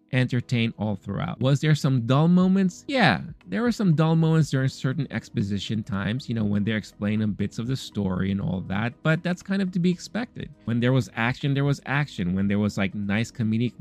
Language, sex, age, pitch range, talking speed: English, male, 20-39, 110-170 Hz, 215 wpm